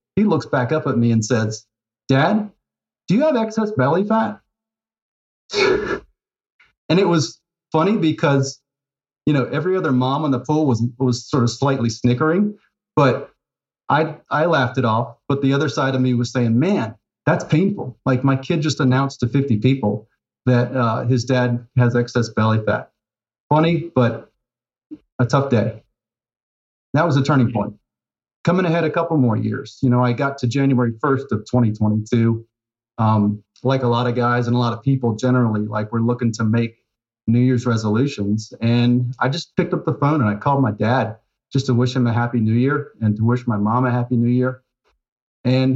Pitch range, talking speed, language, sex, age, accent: 115-150 Hz, 185 wpm, English, male, 30-49, American